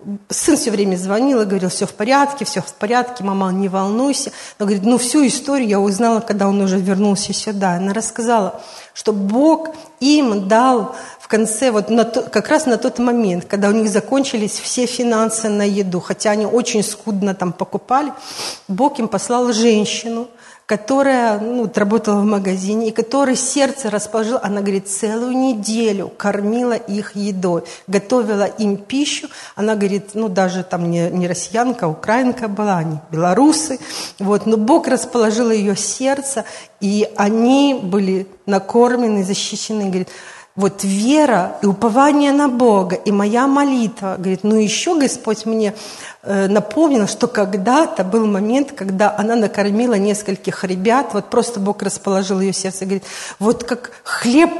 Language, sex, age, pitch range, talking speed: Russian, female, 40-59, 200-245 Hz, 150 wpm